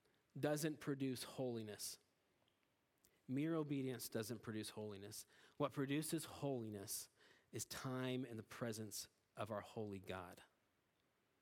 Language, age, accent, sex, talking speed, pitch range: English, 30-49, American, male, 105 wpm, 115-170 Hz